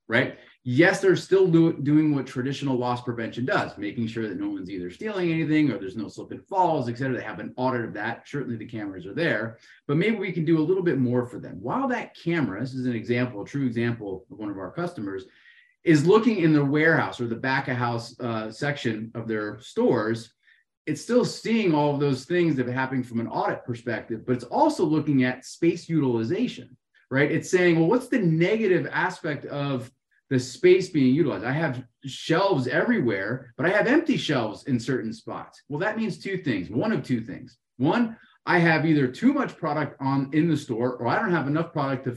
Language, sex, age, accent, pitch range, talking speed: English, male, 30-49, American, 120-165 Hz, 215 wpm